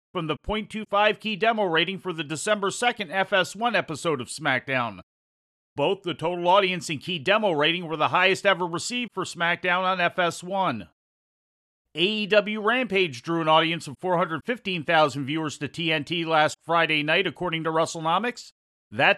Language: English